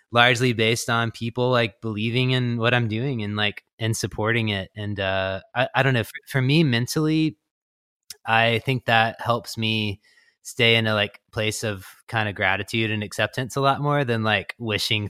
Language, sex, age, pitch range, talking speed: English, male, 20-39, 100-120 Hz, 185 wpm